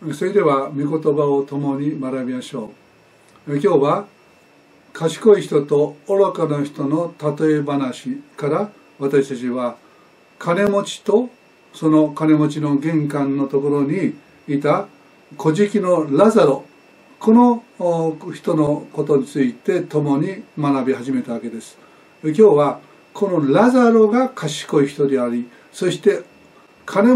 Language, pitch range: Japanese, 140-195 Hz